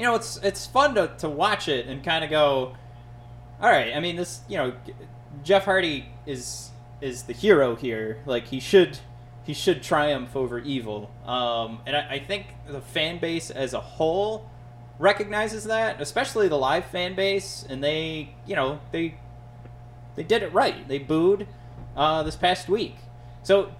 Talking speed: 175 wpm